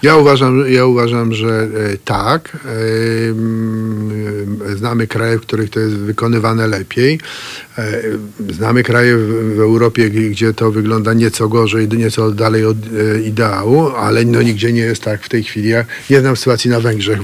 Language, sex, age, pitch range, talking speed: Polish, male, 50-69, 110-130 Hz, 145 wpm